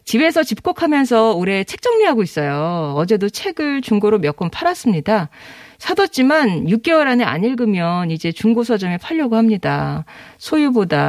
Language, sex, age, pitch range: Korean, female, 40-59, 170-245 Hz